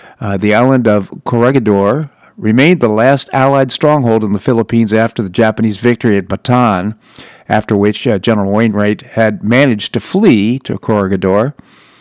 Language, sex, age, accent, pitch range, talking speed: English, male, 50-69, American, 105-130 Hz, 150 wpm